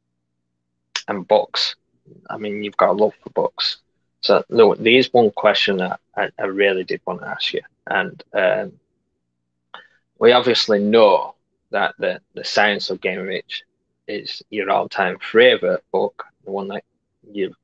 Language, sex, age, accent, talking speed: English, male, 20-39, British, 155 wpm